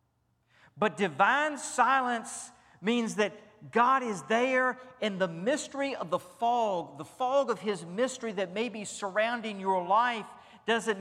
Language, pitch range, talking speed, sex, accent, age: English, 195-230 Hz, 140 wpm, male, American, 50-69